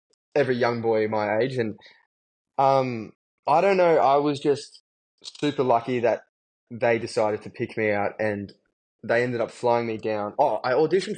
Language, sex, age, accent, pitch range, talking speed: English, male, 10-29, Australian, 105-125 Hz, 170 wpm